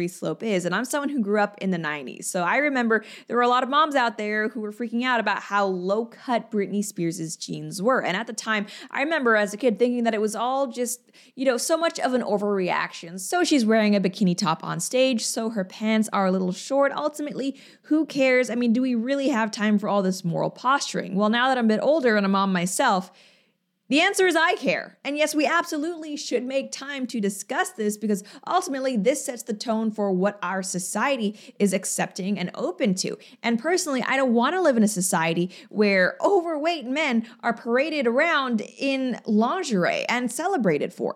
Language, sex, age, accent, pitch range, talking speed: English, female, 20-39, American, 195-265 Hz, 215 wpm